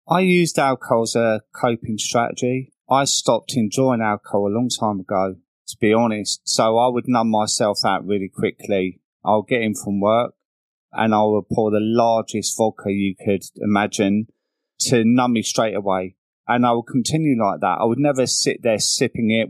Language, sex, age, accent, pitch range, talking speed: English, male, 30-49, British, 105-130 Hz, 180 wpm